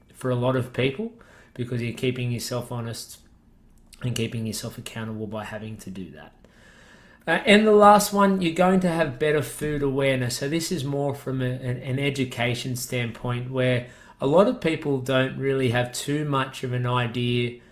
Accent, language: Australian, English